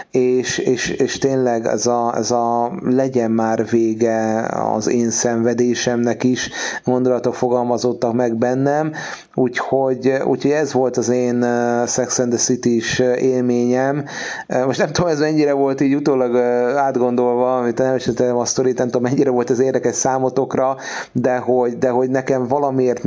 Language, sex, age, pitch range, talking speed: Hungarian, male, 30-49, 115-130 Hz, 155 wpm